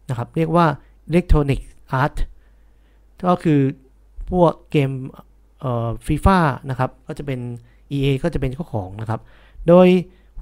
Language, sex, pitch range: Thai, male, 125-165 Hz